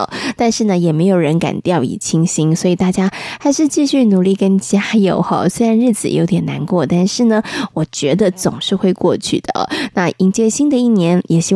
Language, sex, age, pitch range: Chinese, female, 20-39, 180-235 Hz